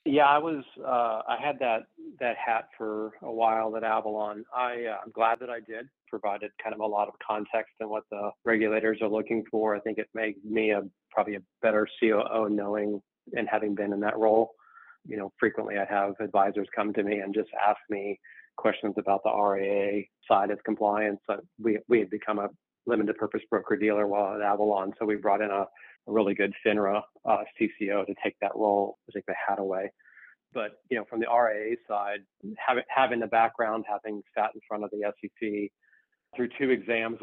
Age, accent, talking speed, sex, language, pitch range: 40-59, American, 205 wpm, male, English, 100-110 Hz